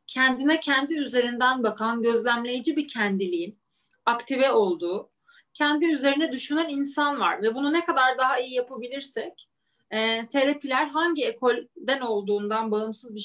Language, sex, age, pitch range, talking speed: Turkish, female, 30-49, 210-300 Hz, 120 wpm